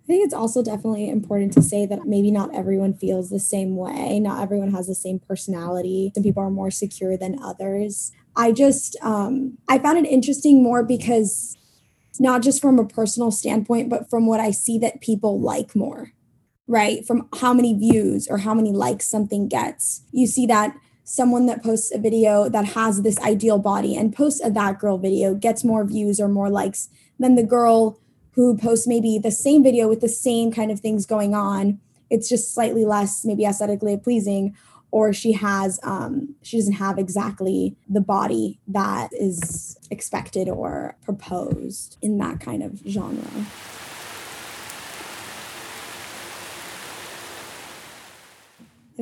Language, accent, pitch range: English, American, 200-245 Hz